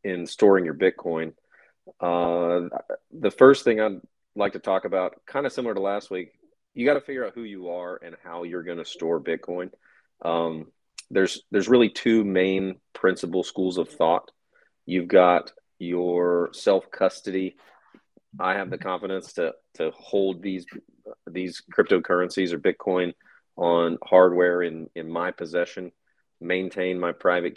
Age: 40-59